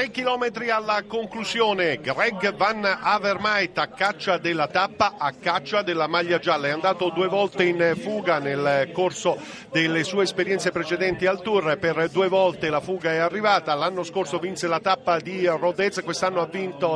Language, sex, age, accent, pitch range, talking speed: Italian, male, 50-69, native, 170-205 Hz, 165 wpm